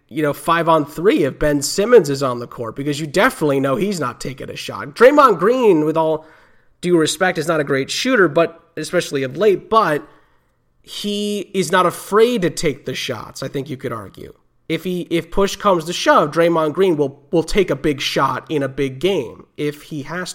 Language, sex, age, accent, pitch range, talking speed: English, male, 30-49, American, 135-175 Hz, 210 wpm